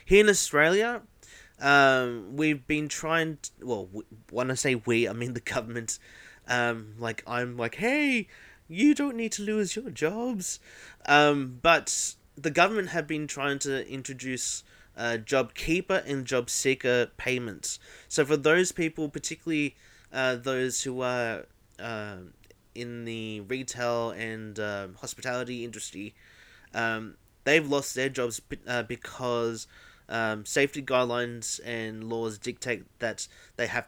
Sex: male